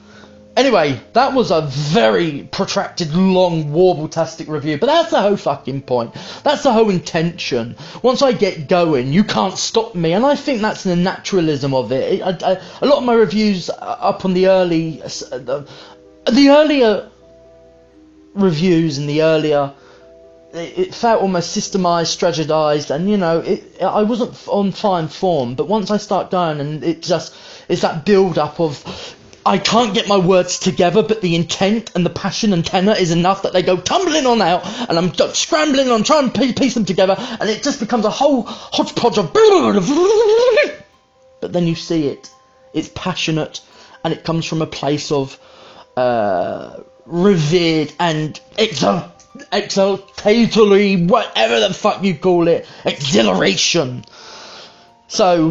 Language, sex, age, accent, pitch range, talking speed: English, male, 20-39, British, 160-215 Hz, 165 wpm